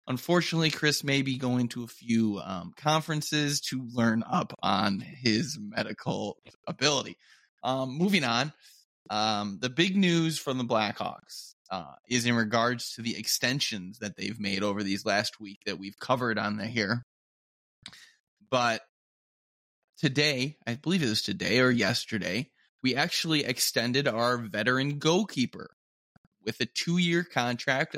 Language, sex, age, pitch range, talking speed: English, male, 20-39, 115-155 Hz, 140 wpm